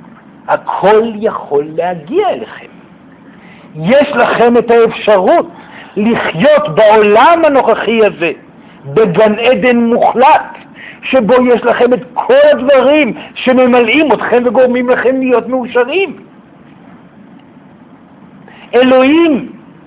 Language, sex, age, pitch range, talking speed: Hebrew, male, 60-79, 235-295 Hz, 80 wpm